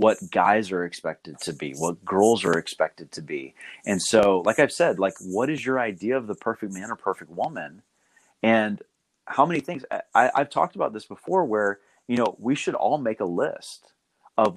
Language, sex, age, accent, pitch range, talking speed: English, male, 30-49, American, 95-120 Hz, 200 wpm